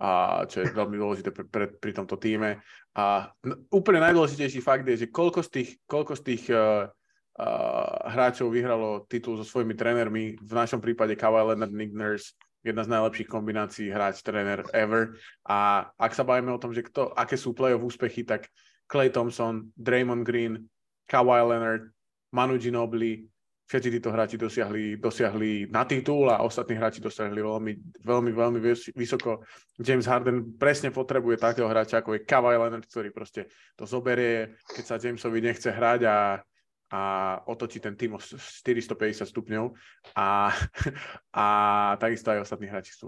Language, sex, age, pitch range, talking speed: Slovak, male, 20-39, 110-125 Hz, 155 wpm